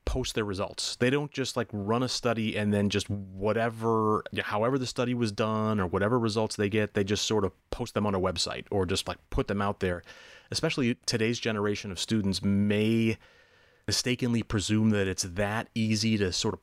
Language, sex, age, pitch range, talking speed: English, male, 30-49, 100-120 Hz, 200 wpm